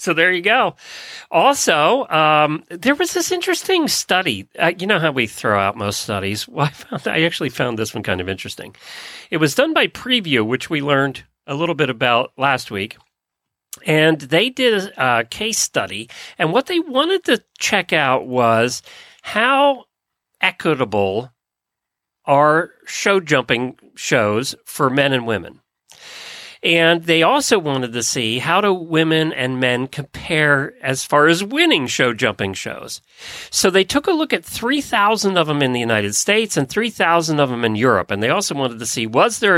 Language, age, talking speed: English, 40-59, 175 wpm